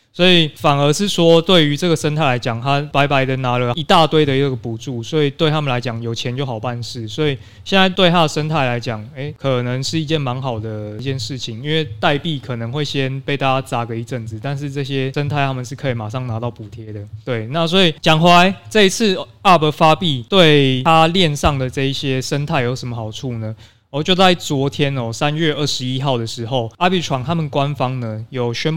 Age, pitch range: 20-39, 120-155 Hz